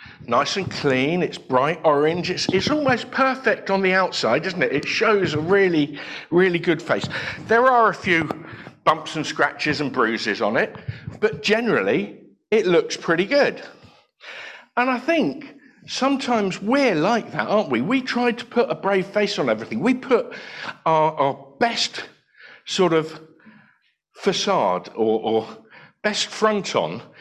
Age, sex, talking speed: 50-69, male, 155 wpm